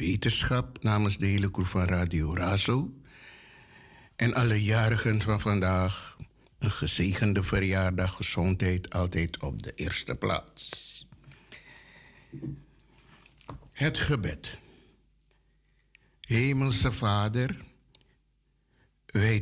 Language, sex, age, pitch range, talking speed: Dutch, male, 60-79, 100-125 Hz, 80 wpm